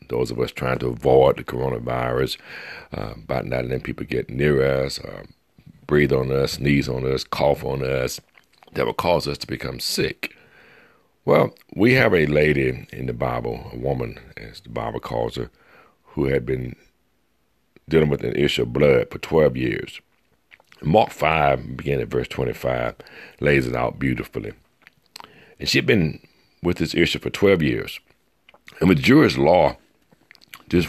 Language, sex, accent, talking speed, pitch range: English, male, American, 165 wpm, 65-80 Hz